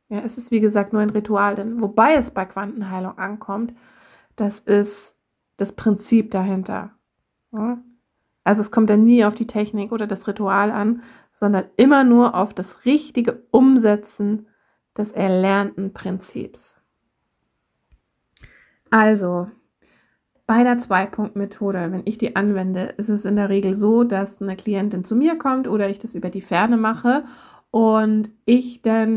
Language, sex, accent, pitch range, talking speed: German, female, German, 200-235 Hz, 145 wpm